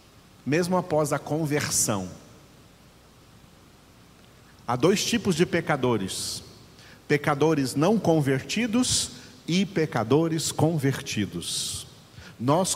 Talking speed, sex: 75 wpm, male